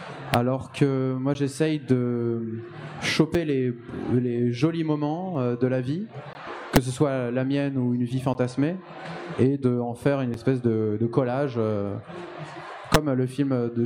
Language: French